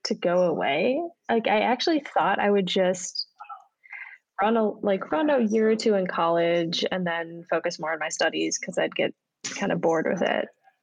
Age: 10-29